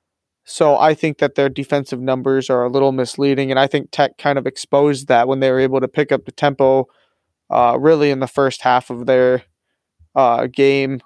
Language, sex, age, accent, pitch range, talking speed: English, male, 20-39, American, 130-150 Hz, 205 wpm